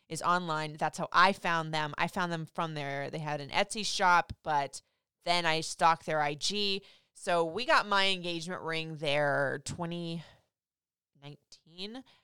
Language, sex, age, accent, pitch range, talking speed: English, female, 20-39, American, 155-200 Hz, 155 wpm